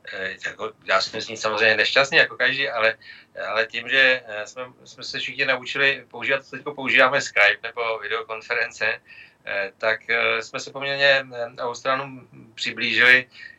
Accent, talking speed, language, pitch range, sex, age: native, 120 wpm, Czech, 110-130 Hz, male, 40-59